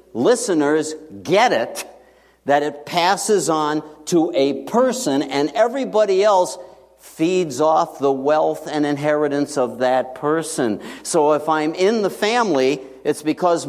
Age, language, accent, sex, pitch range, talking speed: 60-79, English, American, male, 140-175 Hz, 130 wpm